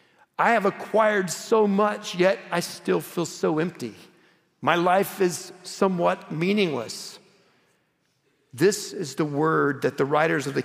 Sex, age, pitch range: male, 50-69, 135-170 Hz